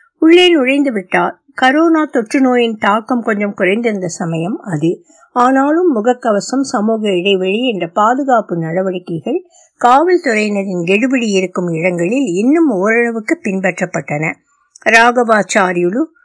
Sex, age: female, 60-79